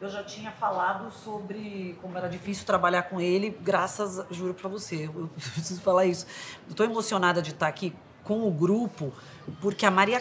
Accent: Brazilian